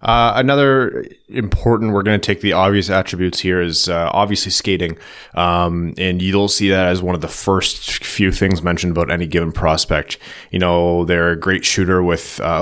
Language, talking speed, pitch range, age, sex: English, 190 wpm, 85-95 Hz, 20-39, male